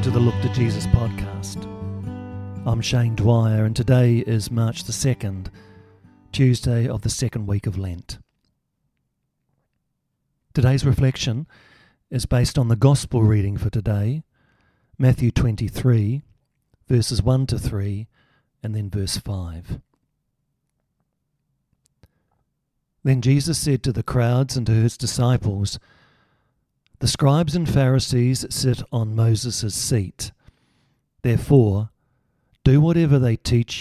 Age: 50-69